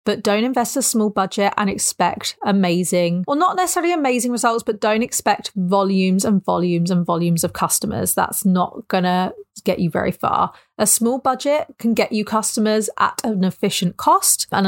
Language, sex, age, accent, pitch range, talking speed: English, female, 30-49, British, 185-230 Hz, 180 wpm